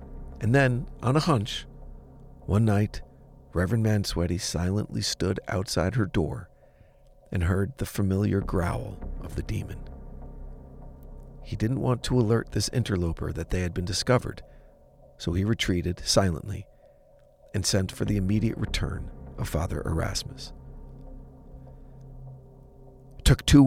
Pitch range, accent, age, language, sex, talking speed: 80-115 Hz, American, 40-59, English, male, 125 wpm